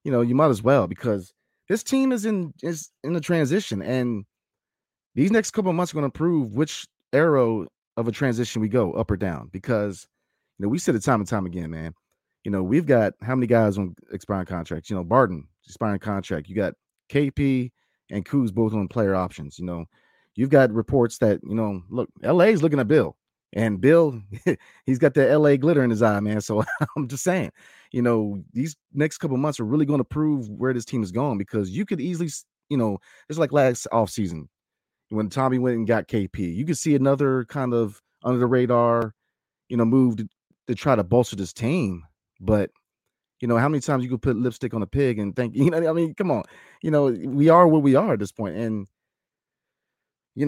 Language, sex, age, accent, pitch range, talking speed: English, male, 30-49, American, 105-145 Hz, 220 wpm